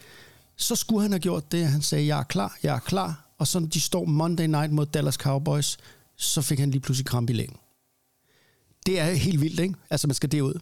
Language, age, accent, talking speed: Danish, 60-79, native, 225 wpm